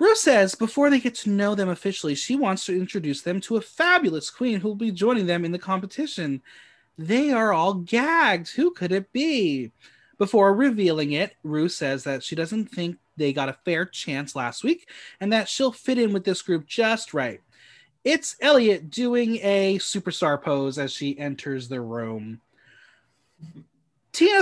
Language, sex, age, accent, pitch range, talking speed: English, male, 30-49, American, 145-220 Hz, 175 wpm